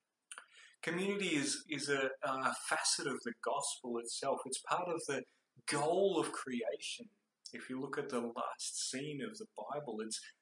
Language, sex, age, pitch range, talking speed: English, male, 30-49, 135-175 Hz, 160 wpm